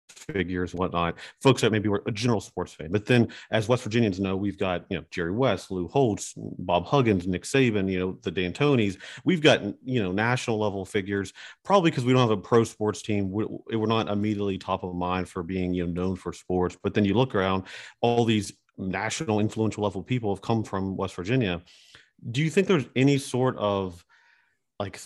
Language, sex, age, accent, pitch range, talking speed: English, male, 40-59, American, 95-115 Hz, 205 wpm